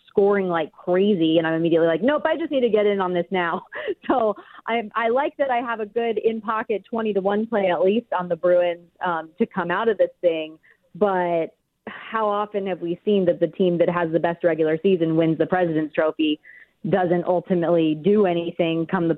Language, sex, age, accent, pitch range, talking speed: English, female, 30-49, American, 170-210 Hz, 210 wpm